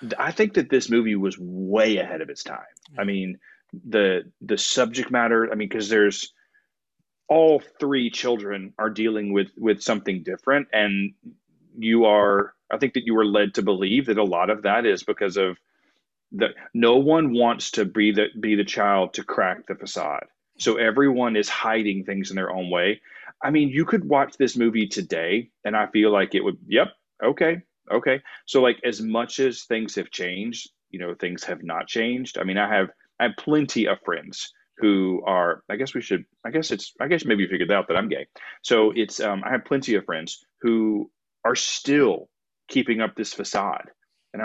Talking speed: 195 wpm